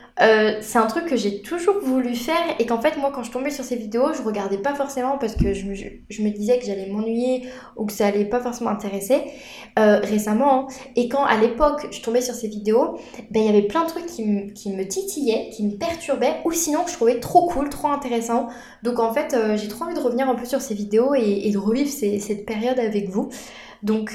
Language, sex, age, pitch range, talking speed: French, female, 20-39, 215-265 Hz, 250 wpm